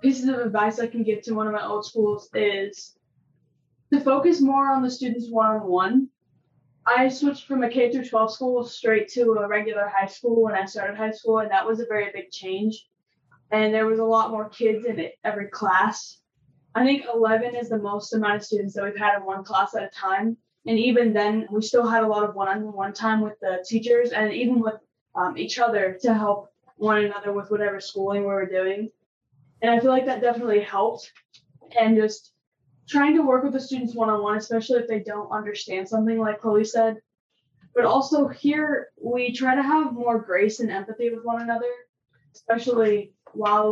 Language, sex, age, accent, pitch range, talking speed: English, female, 10-29, American, 205-240 Hz, 200 wpm